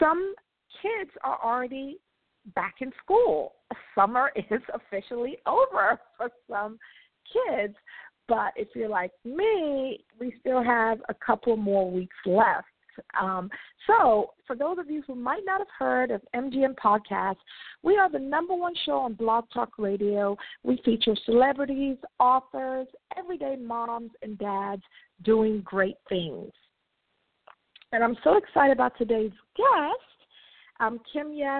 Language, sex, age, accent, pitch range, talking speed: English, female, 40-59, American, 220-285 Hz, 135 wpm